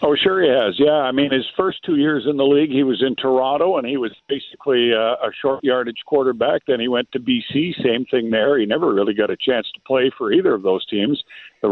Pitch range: 130-190 Hz